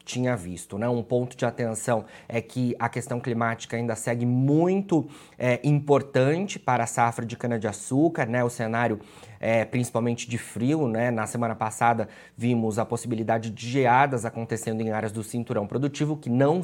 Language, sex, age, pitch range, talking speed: Portuguese, male, 20-39, 115-130 Hz, 175 wpm